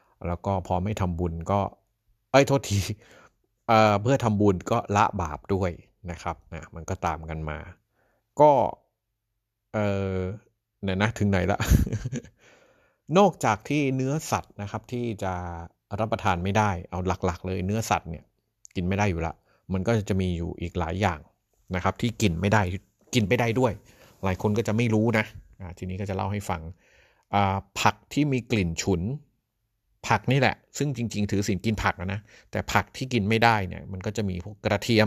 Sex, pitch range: male, 90-110 Hz